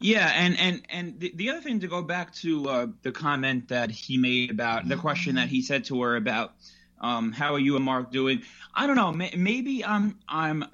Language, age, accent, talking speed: English, 30-49, American, 230 wpm